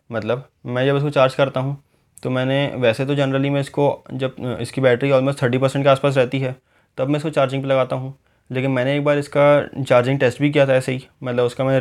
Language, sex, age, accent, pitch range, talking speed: Hindi, male, 20-39, native, 125-140 Hz, 235 wpm